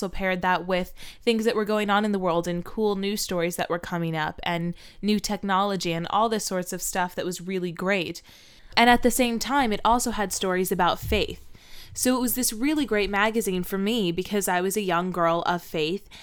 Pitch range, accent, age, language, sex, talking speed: 175-210 Hz, American, 10-29, English, female, 220 wpm